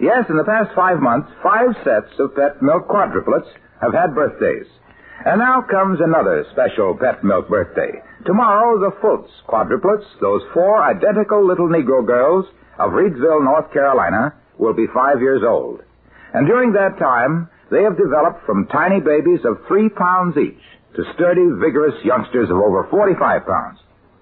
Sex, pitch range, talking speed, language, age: male, 155-220 Hz, 160 wpm, English, 60-79